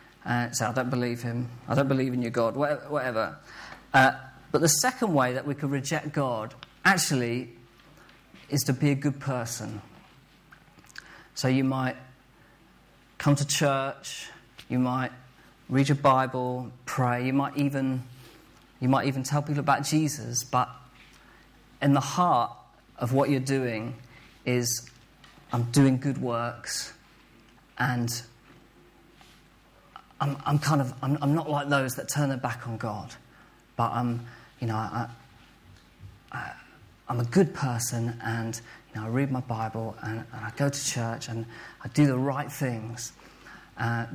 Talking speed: 150 wpm